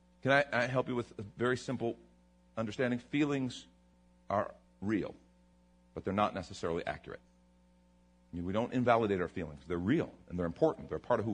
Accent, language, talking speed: American, English, 170 wpm